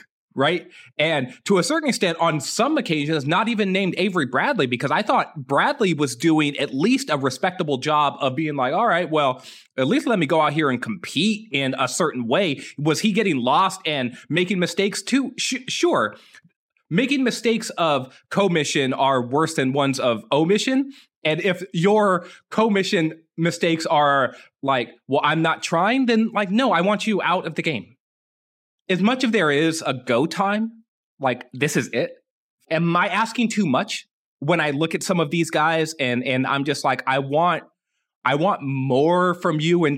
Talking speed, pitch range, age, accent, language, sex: 185 wpm, 140-205 Hz, 20-39, American, English, male